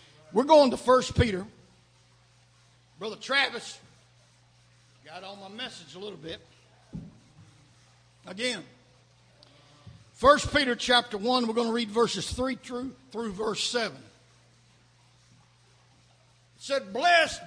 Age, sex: 60-79, male